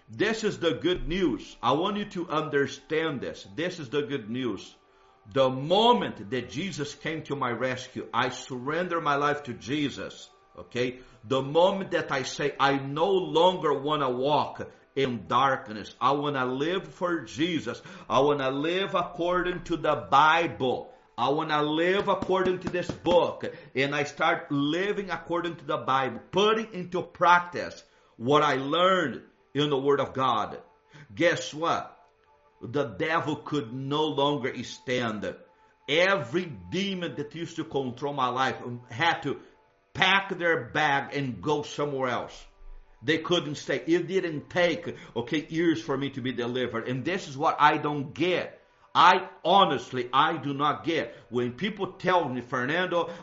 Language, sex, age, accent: English, male, 50-69, Brazilian